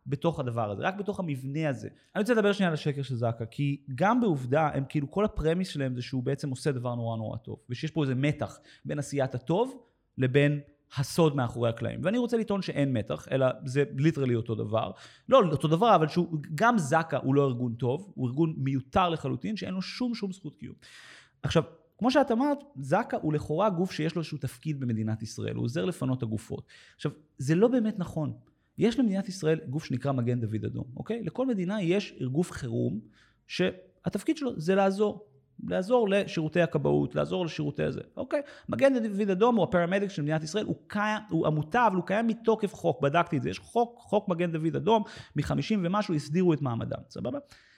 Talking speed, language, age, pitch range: 180 wpm, Hebrew, 30-49, 135-205 Hz